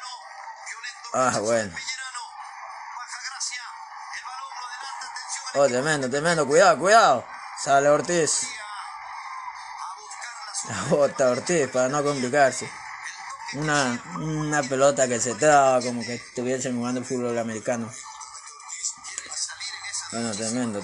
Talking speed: 85 wpm